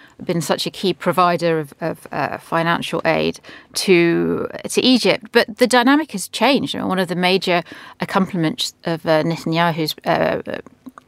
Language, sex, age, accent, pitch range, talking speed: English, female, 40-59, British, 165-205 Hz, 155 wpm